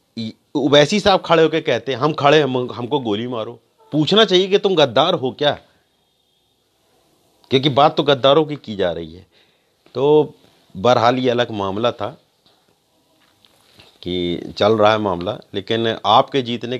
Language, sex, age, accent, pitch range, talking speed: Hindi, male, 40-59, native, 105-145 Hz, 150 wpm